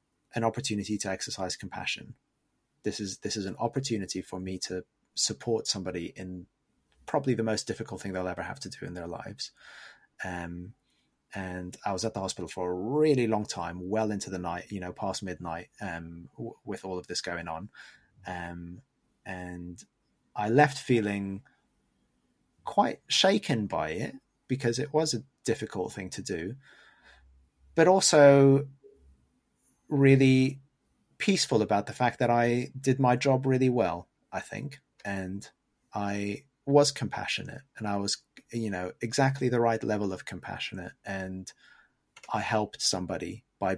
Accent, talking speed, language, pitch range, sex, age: British, 150 wpm, English, 95-120 Hz, male, 30-49